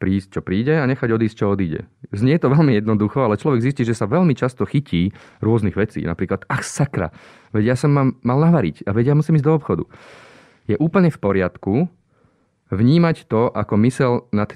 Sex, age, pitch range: male, 30-49, 100-120 Hz